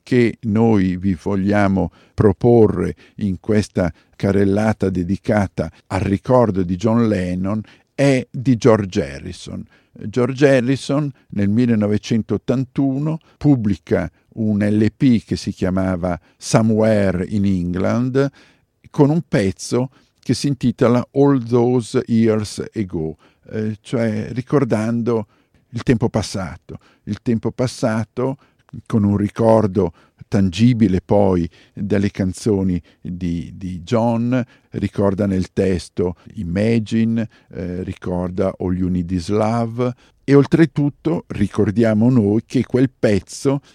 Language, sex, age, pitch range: Italian, male, 50-69, 95-125 Hz